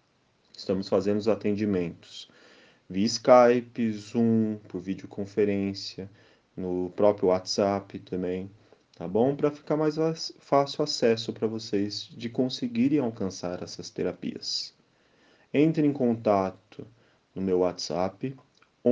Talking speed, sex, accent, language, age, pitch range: 110 wpm, male, Brazilian, Portuguese, 30-49, 95-120 Hz